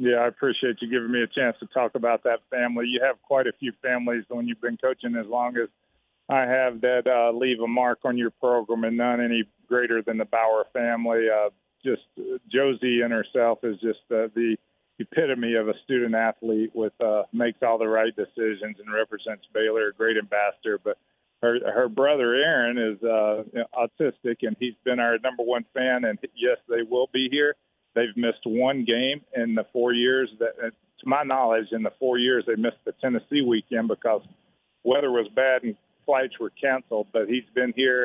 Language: English